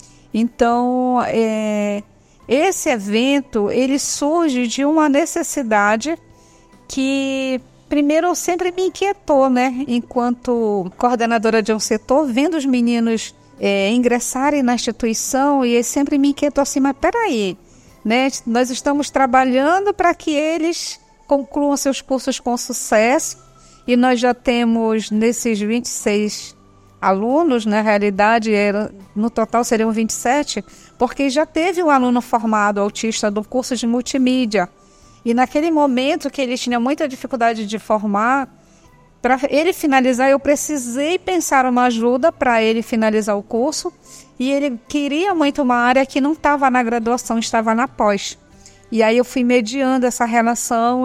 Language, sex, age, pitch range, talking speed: Portuguese, female, 50-69, 230-280 Hz, 135 wpm